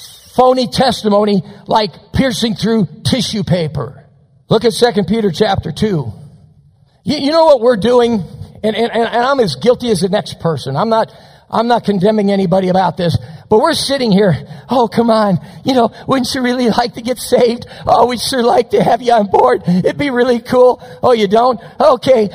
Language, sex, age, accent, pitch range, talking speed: English, male, 50-69, American, 165-240 Hz, 190 wpm